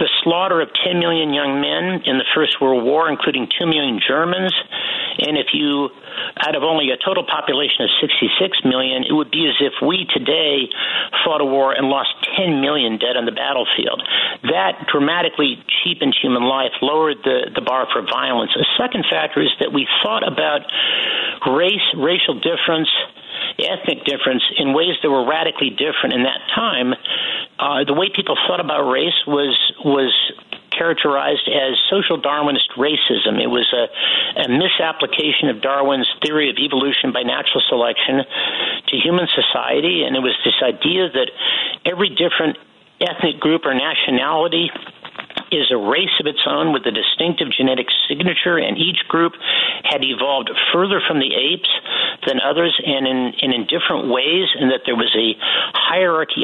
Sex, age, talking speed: male, 50-69, 165 wpm